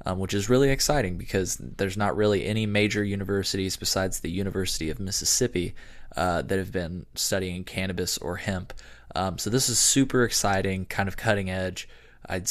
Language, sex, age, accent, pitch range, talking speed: English, male, 20-39, American, 95-105 Hz, 175 wpm